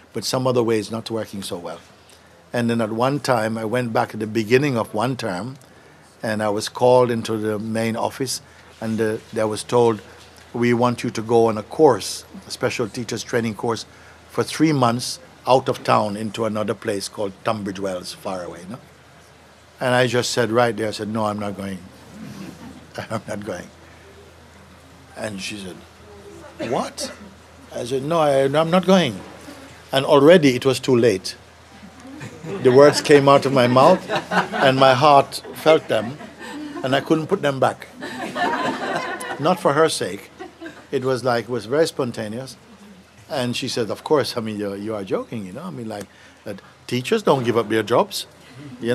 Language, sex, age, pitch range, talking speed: English, male, 60-79, 105-130 Hz, 180 wpm